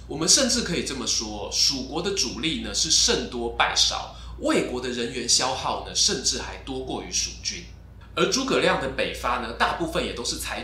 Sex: male